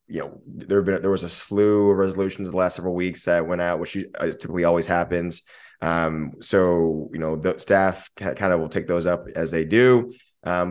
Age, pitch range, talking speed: 20-39, 85-95 Hz, 215 wpm